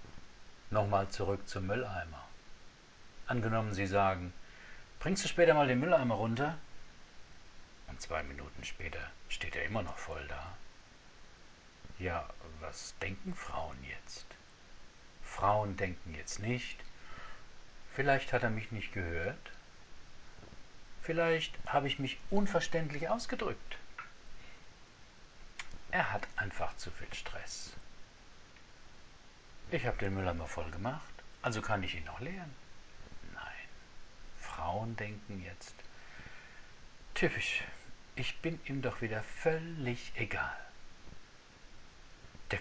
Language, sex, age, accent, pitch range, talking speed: German, male, 60-79, German, 95-135 Hz, 105 wpm